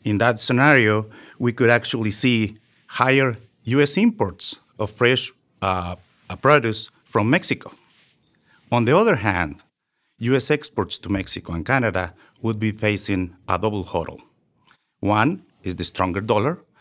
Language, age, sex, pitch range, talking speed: English, 50-69, male, 95-125 Hz, 130 wpm